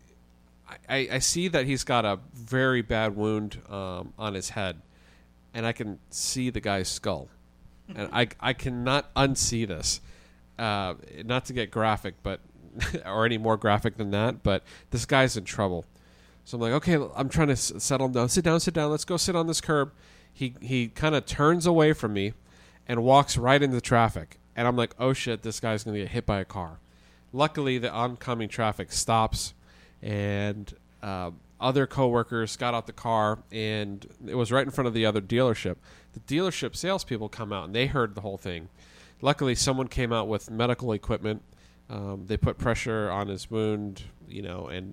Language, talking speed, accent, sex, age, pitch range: English, 190 wpm, American, male, 40-59, 95-125 Hz